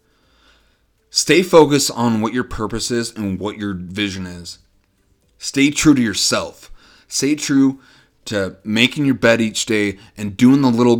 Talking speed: 155 wpm